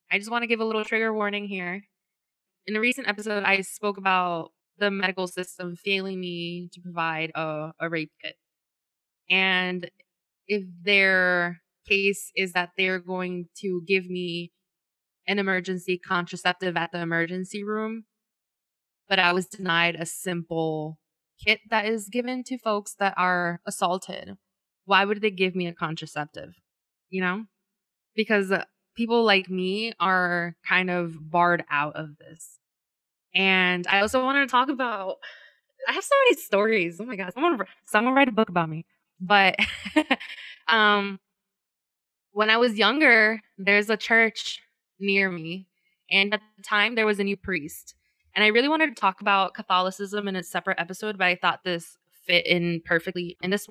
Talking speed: 160 wpm